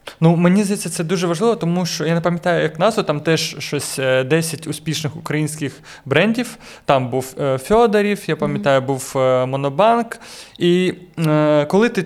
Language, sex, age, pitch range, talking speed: Ukrainian, male, 20-39, 135-170 Hz, 150 wpm